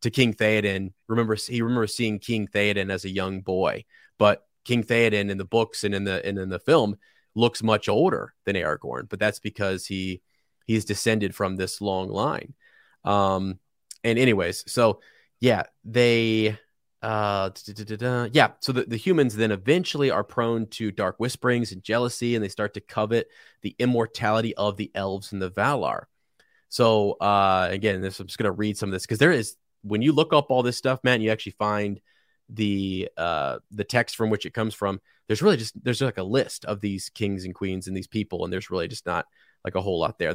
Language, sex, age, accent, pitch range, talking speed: English, male, 20-39, American, 100-115 Hz, 200 wpm